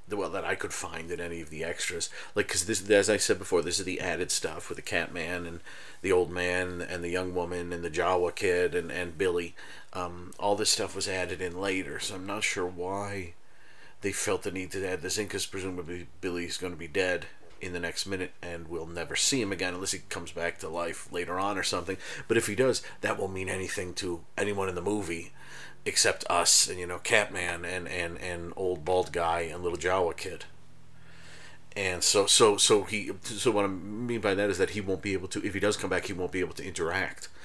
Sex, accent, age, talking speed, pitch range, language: male, American, 40-59, 235 wpm, 85-95 Hz, English